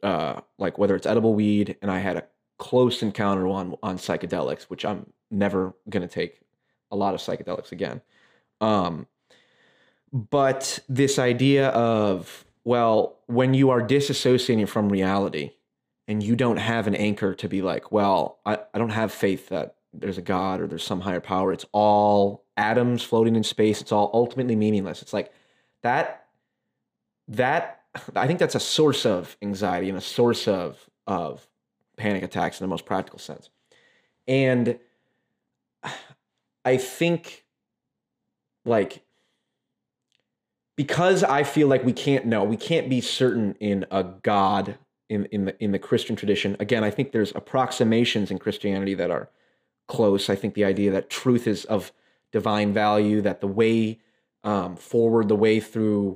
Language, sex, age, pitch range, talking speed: English, male, 20-39, 100-120 Hz, 160 wpm